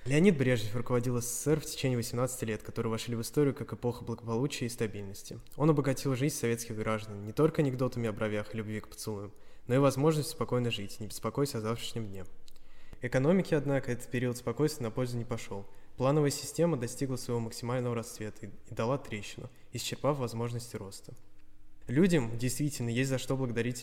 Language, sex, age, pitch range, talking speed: Russian, male, 20-39, 110-140 Hz, 170 wpm